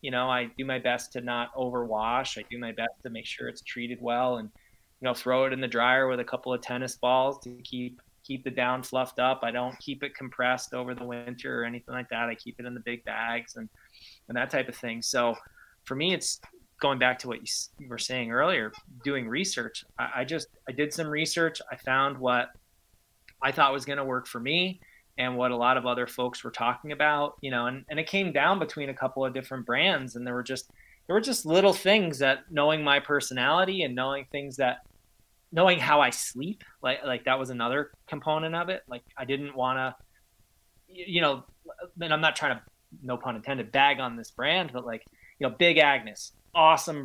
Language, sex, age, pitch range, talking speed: English, male, 20-39, 125-145 Hz, 225 wpm